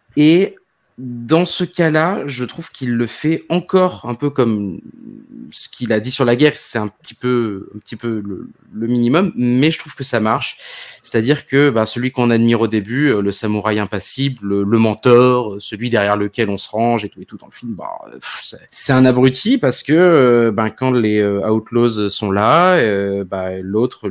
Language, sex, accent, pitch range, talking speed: French, male, French, 105-130 Hz, 200 wpm